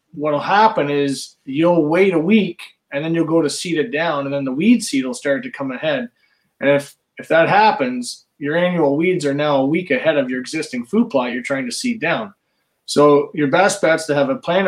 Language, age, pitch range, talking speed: English, 20-39, 140-175 Hz, 230 wpm